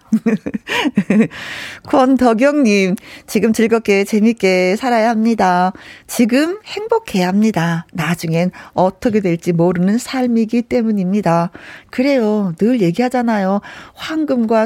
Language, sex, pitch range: Korean, female, 185-265 Hz